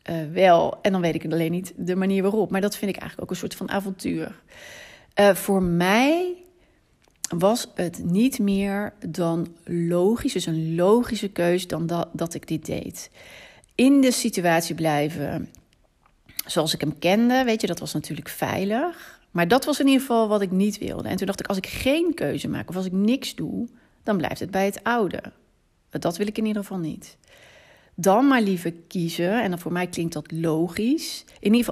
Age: 30-49